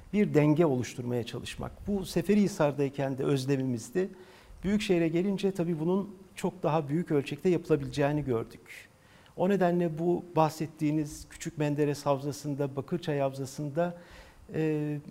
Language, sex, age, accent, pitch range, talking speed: Turkish, male, 50-69, native, 140-180 Hz, 110 wpm